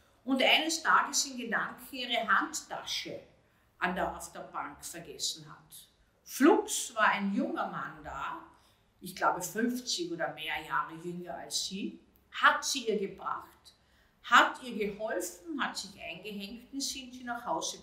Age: 50-69